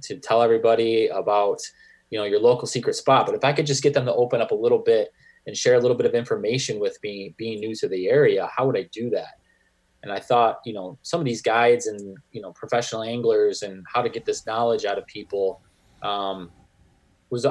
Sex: male